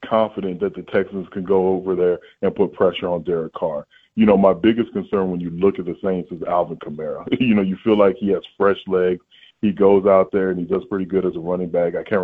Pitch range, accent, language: 90-105 Hz, American, English